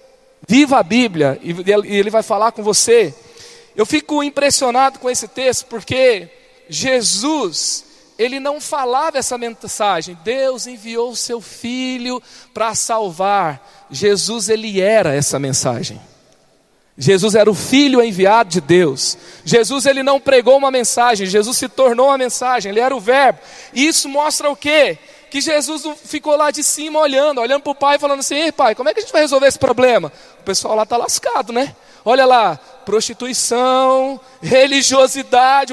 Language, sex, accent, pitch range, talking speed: Portuguese, male, Brazilian, 235-285 Hz, 160 wpm